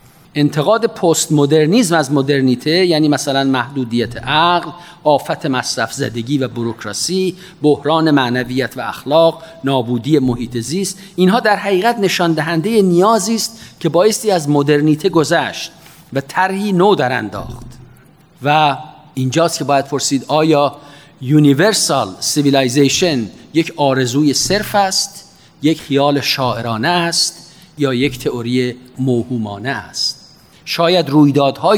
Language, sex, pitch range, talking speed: Persian, male, 125-165 Hz, 115 wpm